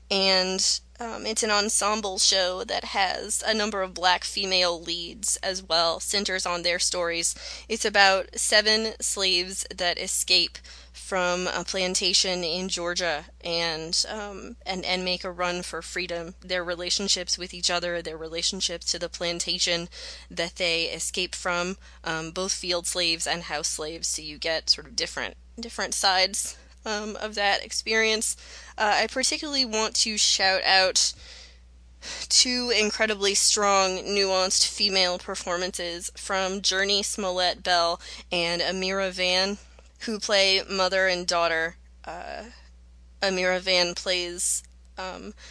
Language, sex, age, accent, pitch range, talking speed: English, female, 20-39, American, 170-195 Hz, 135 wpm